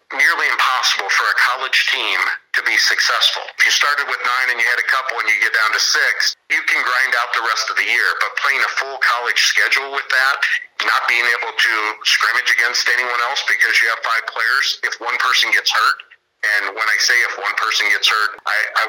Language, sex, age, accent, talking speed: English, male, 50-69, American, 220 wpm